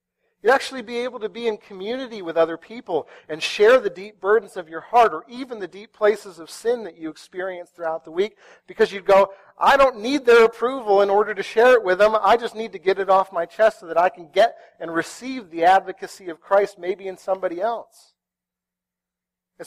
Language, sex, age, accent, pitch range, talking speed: English, male, 40-59, American, 155-215 Hz, 220 wpm